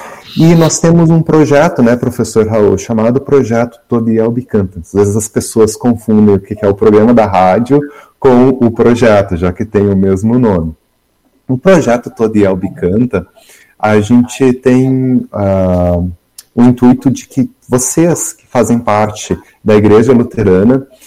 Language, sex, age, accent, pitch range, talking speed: Portuguese, male, 30-49, Brazilian, 110-150 Hz, 150 wpm